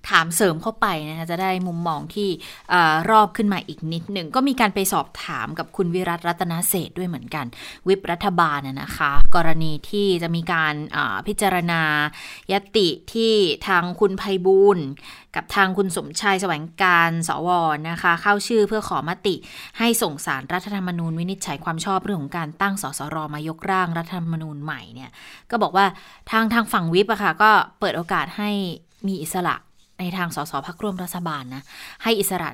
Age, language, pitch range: 20-39, Thai, 165-215 Hz